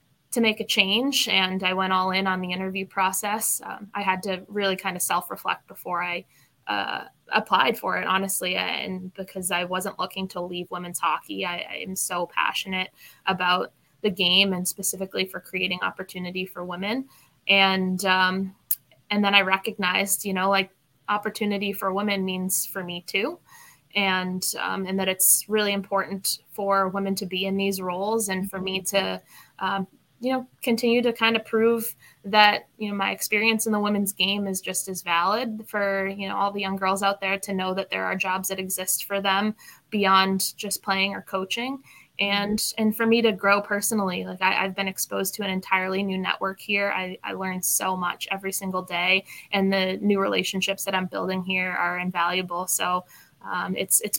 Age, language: 20-39, English